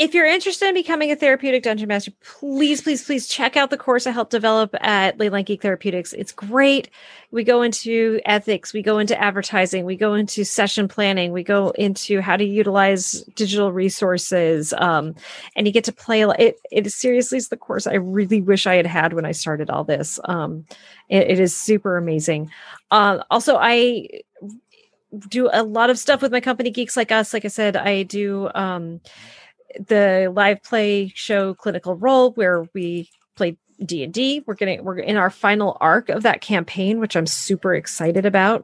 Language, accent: English, American